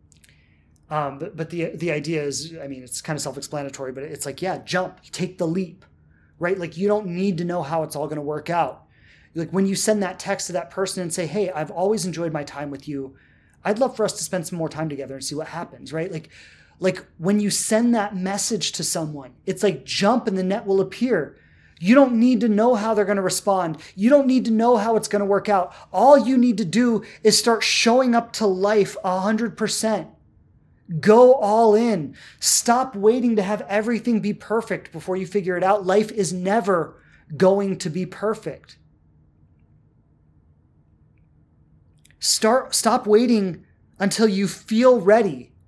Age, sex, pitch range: 30-49, male, 160-215 Hz